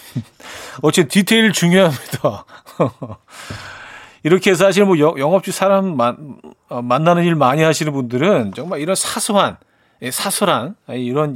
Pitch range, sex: 125-165 Hz, male